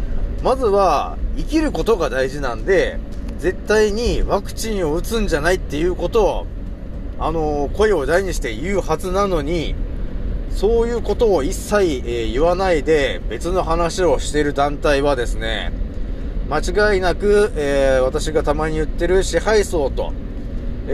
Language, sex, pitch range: Japanese, male, 140-205 Hz